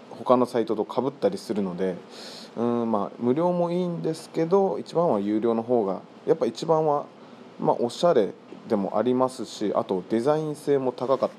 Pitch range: 105-155 Hz